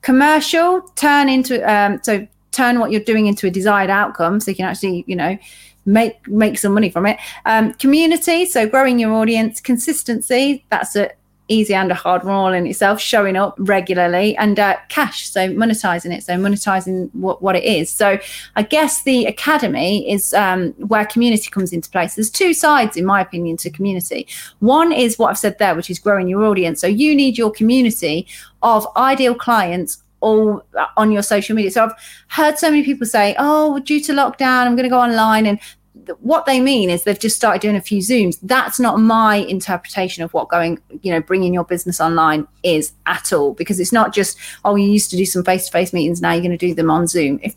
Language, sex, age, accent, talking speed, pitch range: English, female, 30-49, British, 210 wpm, 185-235 Hz